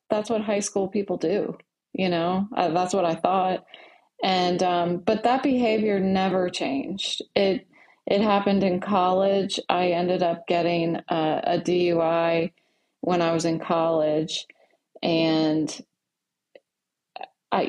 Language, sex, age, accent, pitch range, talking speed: English, female, 30-49, American, 170-205 Hz, 130 wpm